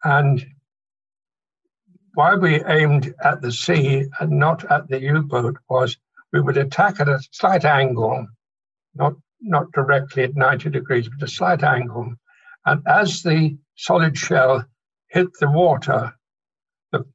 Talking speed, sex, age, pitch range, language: 135 wpm, male, 60-79, 135-170 Hz, English